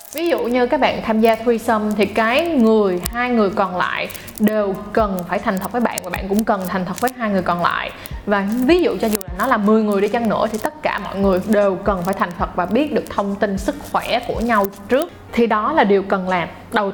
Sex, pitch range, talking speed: female, 200-235 Hz, 260 wpm